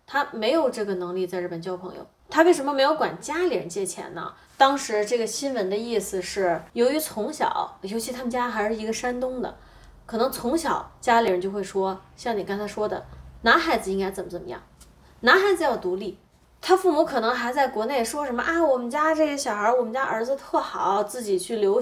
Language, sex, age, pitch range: Chinese, female, 20-39, 200-285 Hz